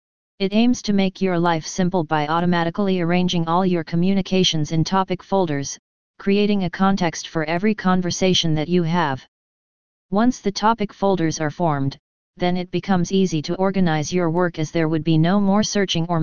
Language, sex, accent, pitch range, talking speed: English, female, American, 165-190 Hz, 175 wpm